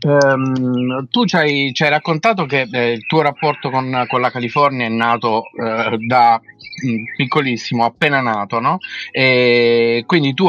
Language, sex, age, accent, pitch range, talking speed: Italian, male, 30-49, native, 115-140 Hz, 150 wpm